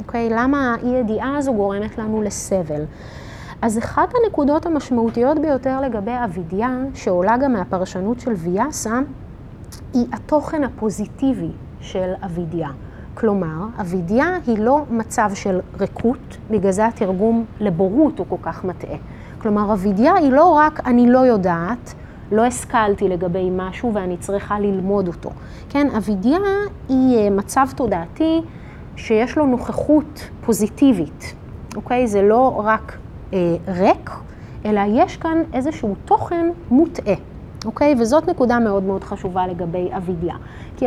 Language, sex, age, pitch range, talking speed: Hebrew, female, 30-49, 195-265 Hz, 130 wpm